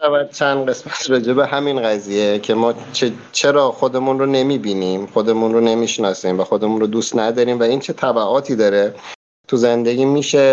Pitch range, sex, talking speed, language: 110-135 Hz, male, 170 wpm, Persian